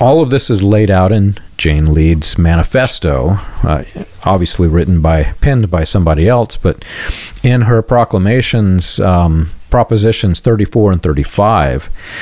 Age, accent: 40-59, American